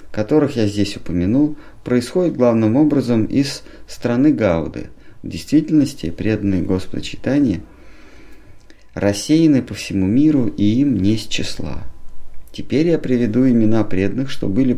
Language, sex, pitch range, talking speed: Russian, male, 90-125 Hz, 120 wpm